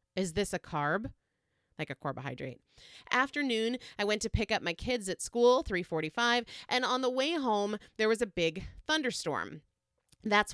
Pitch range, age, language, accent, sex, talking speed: 180-240 Hz, 30-49, English, American, female, 165 wpm